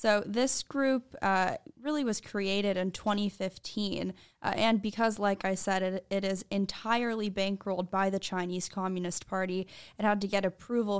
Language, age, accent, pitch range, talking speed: English, 10-29, American, 190-215 Hz, 165 wpm